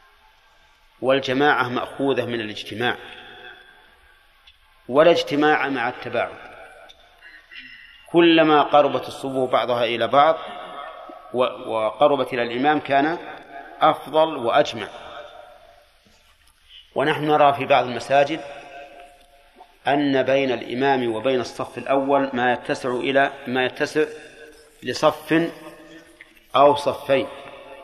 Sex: male